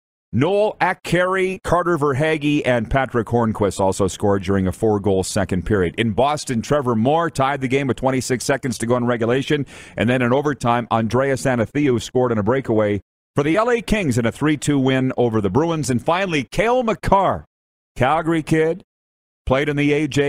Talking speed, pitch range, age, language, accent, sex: 175 wpm, 100-135 Hz, 40-59, English, American, male